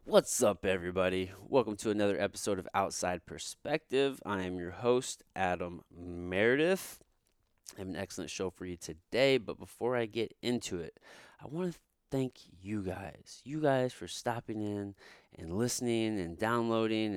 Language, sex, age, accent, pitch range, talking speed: English, male, 30-49, American, 90-120 Hz, 155 wpm